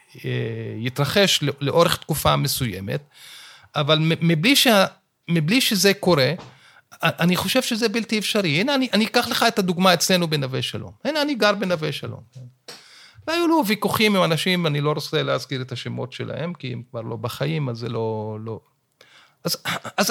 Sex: male